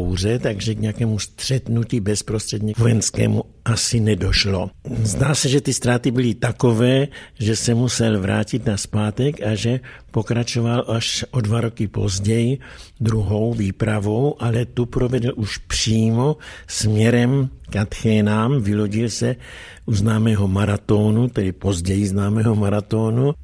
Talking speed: 125 wpm